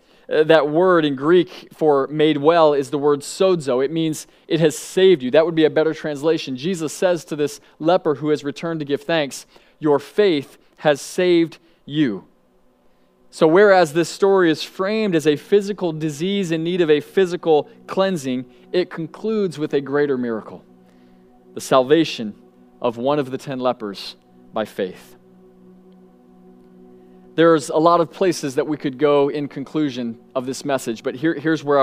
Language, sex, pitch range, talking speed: English, male, 120-160 Hz, 165 wpm